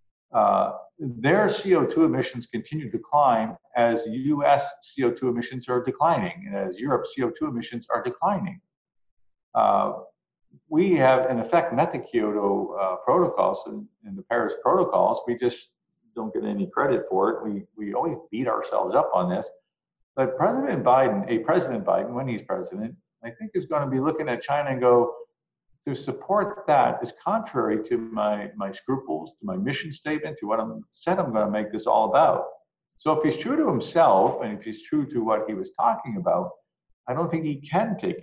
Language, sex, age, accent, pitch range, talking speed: English, male, 50-69, American, 110-175 Hz, 180 wpm